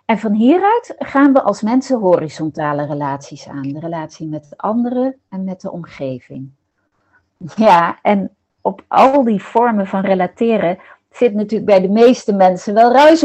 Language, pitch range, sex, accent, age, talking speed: Dutch, 175-245 Hz, female, Dutch, 40-59, 155 wpm